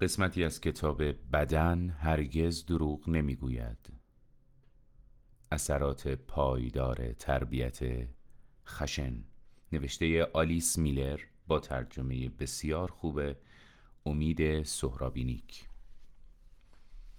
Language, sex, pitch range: Persian, male, 70-90 Hz